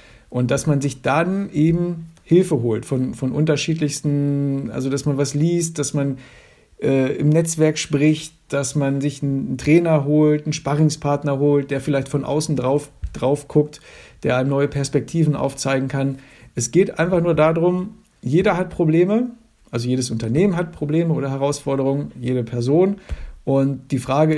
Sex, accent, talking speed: male, German, 160 wpm